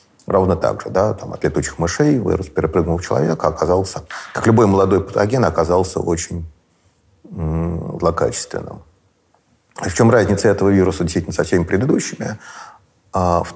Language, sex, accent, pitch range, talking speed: Russian, male, native, 80-95 Hz, 140 wpm